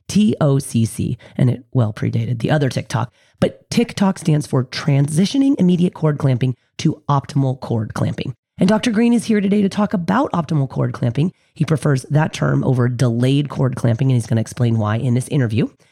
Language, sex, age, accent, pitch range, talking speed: English, female, 30-49, American, 125-170 Hz, 185 wpm